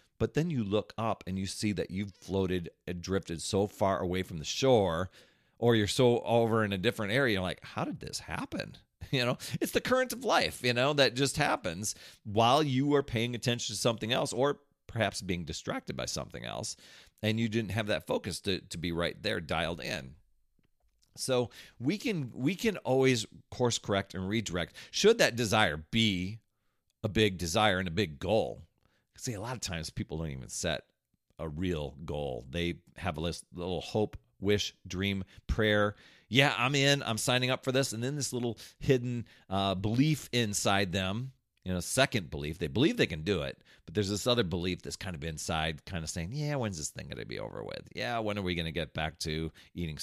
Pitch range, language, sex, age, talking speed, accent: 90-120 Hz, English, male, 40-59, 205 wpm, American